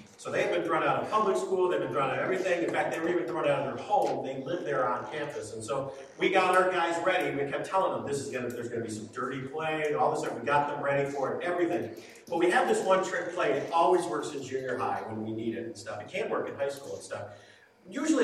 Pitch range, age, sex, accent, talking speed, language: 145-190 Hz, 40-59, male, American, 305 wpm, English